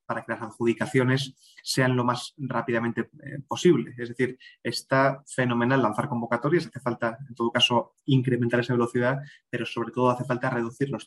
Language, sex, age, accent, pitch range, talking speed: Spanish, male, 20-39, Spanish, 120-130 Hz, 170 wpm